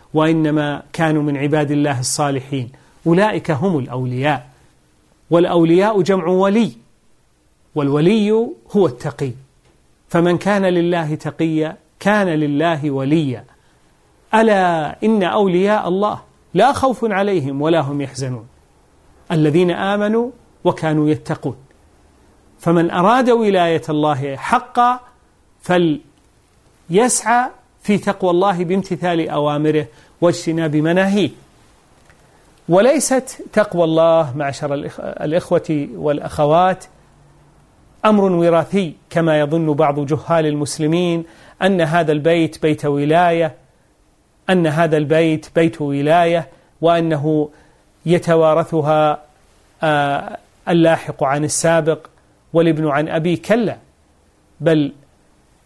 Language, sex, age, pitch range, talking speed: Arabic, male, 40-59, 145-180 Hz, 90 wpm